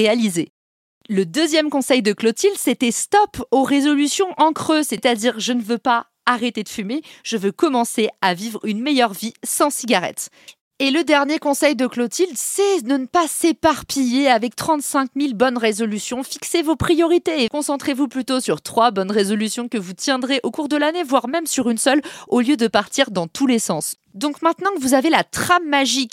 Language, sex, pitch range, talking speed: French, female, 215-285 Hz, 195 wpm